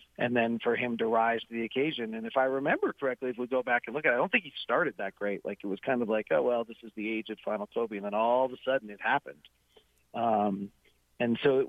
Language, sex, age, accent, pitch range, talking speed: English, male, 40-59, American, 105-130 Hz, 285 wpm